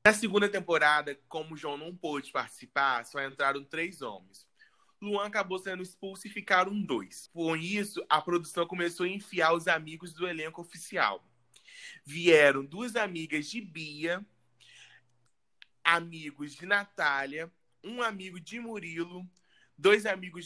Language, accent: Spanish, Brazilian